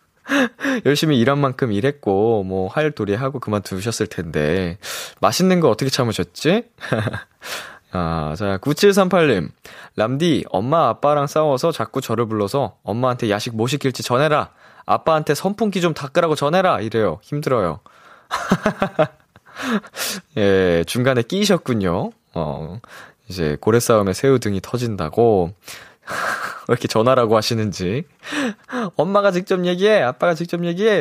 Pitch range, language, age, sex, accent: 110-175 Hz, Korean, 20-39, male, native